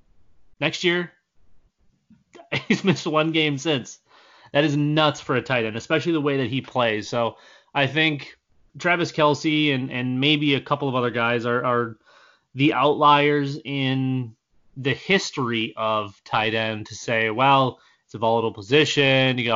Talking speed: 155 wpm